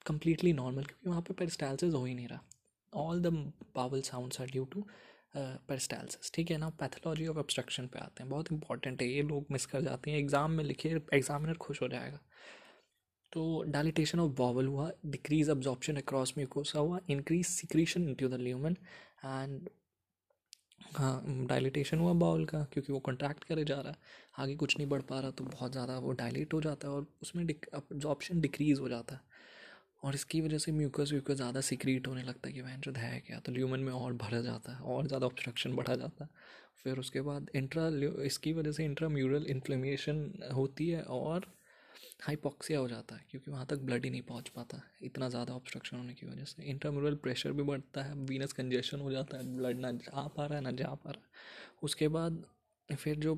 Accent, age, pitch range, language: native, 20-39, 130-155 Hz, Hindi